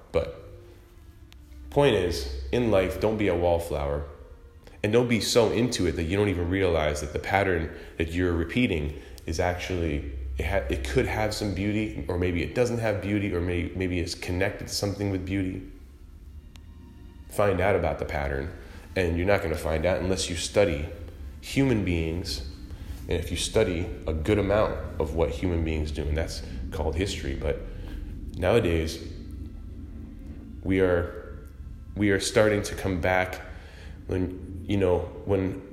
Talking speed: 160 wpm